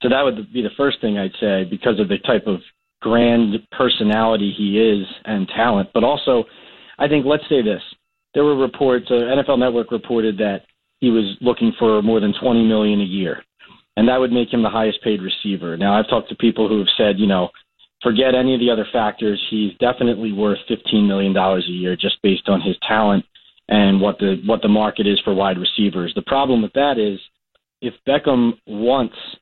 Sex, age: male, 30-49